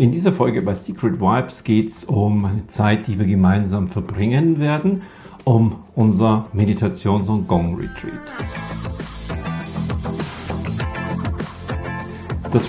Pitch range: 100-130 Hz